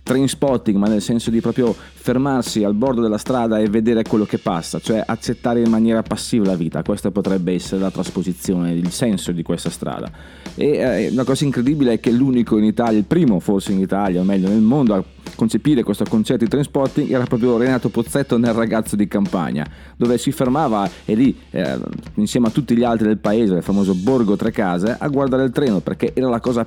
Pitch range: 100-130 Hz